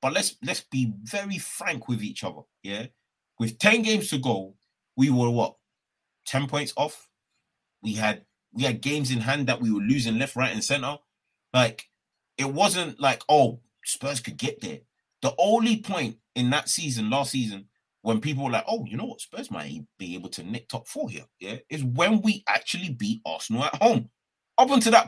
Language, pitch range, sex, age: English, 120-190 Hz, male, 30-49